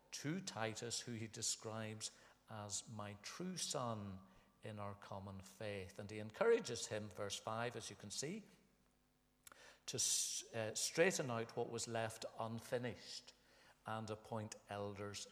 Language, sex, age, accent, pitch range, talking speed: English, male, 60-79, British, 100-115 Hz, 135 wpm